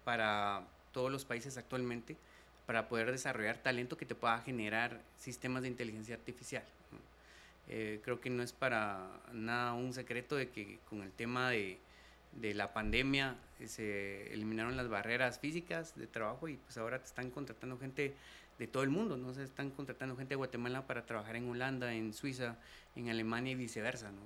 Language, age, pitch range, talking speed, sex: Spanish, 30-49, 110-130 Hz, 180 wpm, male